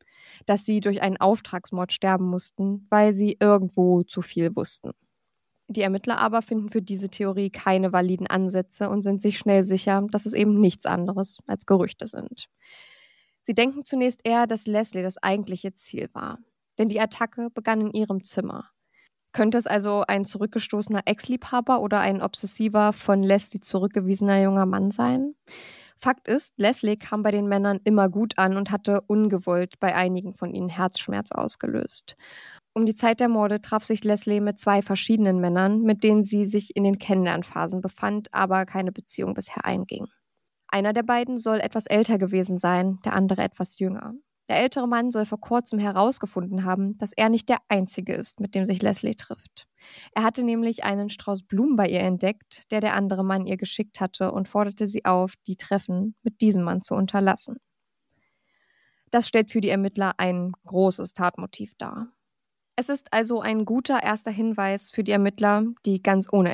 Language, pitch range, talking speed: German, 190-220 Hz, 175 wpm